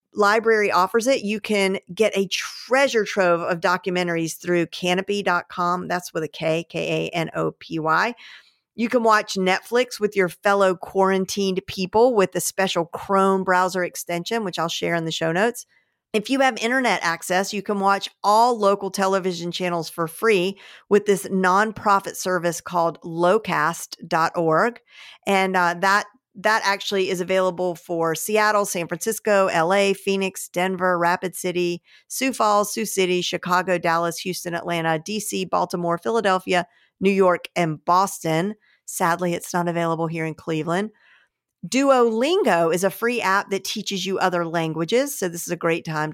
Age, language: 50-69, English